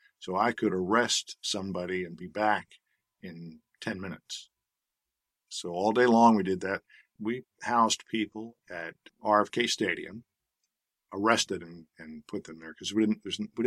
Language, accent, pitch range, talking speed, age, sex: English, American, 95-110 Hz, 145 wpm, 50-69, male